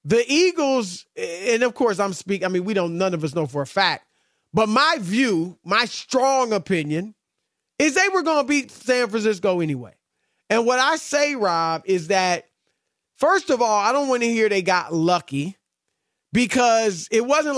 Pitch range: 180-245 Hz